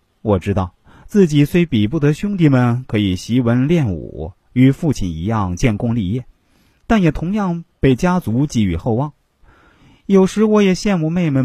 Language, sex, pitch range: Chinese, male, 105-160 Hz